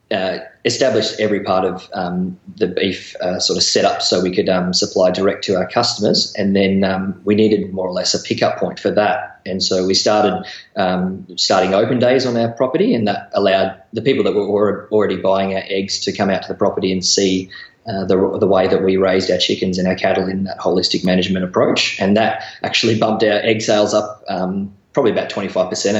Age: 20-39